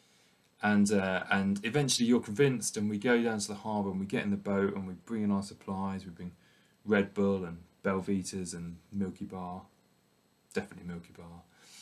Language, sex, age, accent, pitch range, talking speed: English, male, 20-39, British, 95-120 Hz, 190 wpm